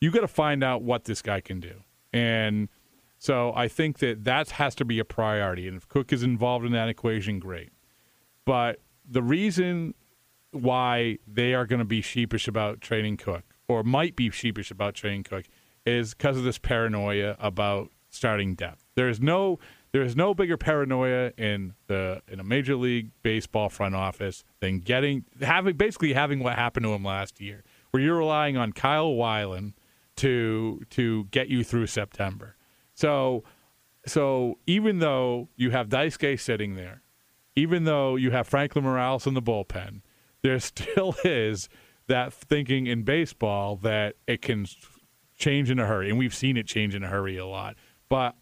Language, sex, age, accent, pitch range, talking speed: English, male, 40-59, American, 105-135 Hz, 175 wpm